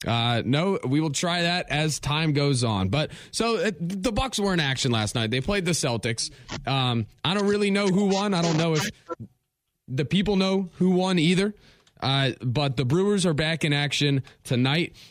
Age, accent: 20-39, American